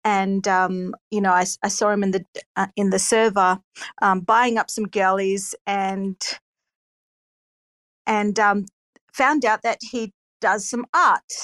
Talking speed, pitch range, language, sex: 150 wpm, 195-245 Hz, English, female